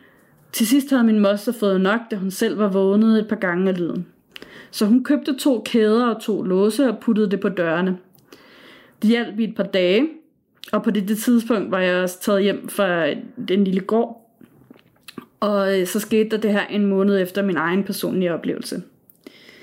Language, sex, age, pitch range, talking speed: Danish, female, 30-49, 195-230 Hz, 185 wpm